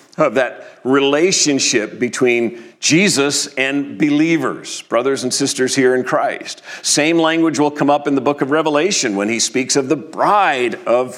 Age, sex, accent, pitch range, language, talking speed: 50-69, male, American, 110-150 Hz, English, 160 wpm